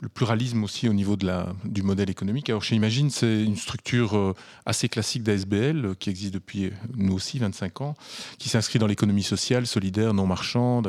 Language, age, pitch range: French, 30-49, 95-120 Hz